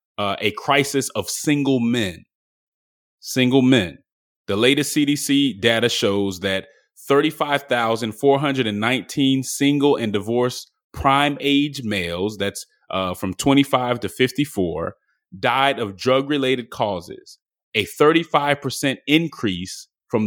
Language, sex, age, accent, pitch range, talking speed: English, male, 30-49, American, 105-145 Hz, 135 wpm